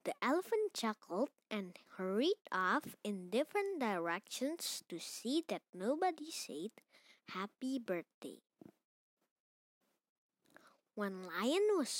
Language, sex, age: English, female, 20-39